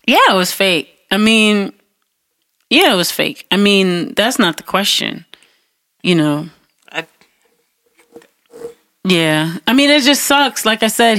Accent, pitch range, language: American, 175-235 Hz, English